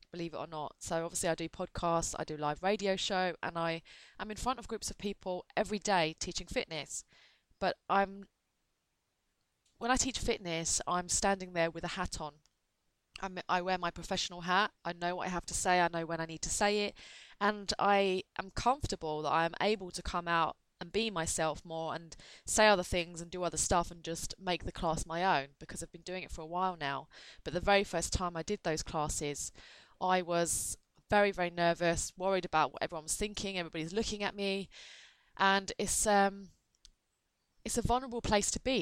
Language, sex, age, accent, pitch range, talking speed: English, female, 20-39, British, 165-195 Hz, 205 wpm